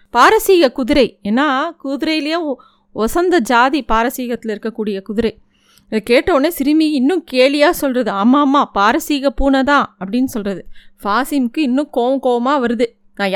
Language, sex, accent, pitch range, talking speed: Tamil, female, native, 235-305 Hz, 110 wpm